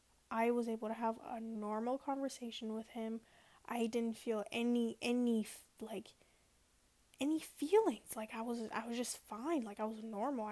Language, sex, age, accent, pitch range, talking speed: English, female, 10-29, American, 215-245 Hz, 165 wpm